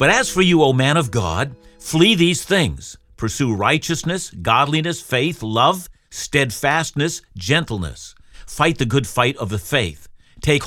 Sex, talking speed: male, 145 wpm